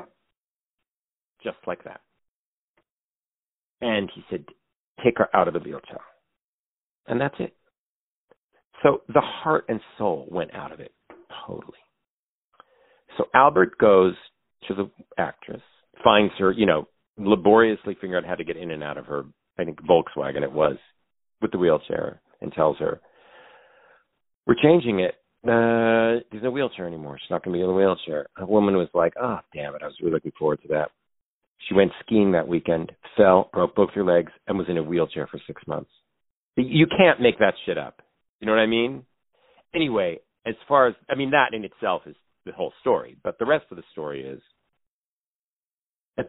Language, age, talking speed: English, 50-69, 180 wpm